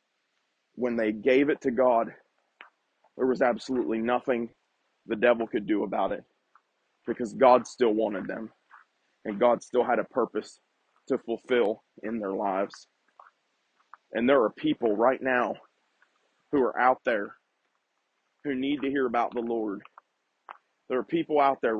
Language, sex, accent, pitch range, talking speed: English, male, American, 135-180 Hz, 150 wpm